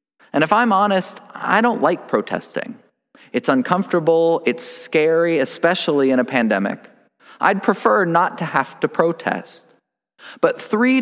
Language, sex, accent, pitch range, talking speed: English, male, American, 155-210 Hz, 135 wpm